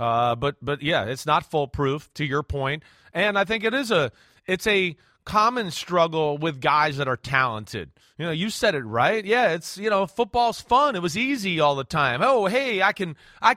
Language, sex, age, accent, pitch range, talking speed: English, male, 30-49, American, 160-210 Hz, 210 wpm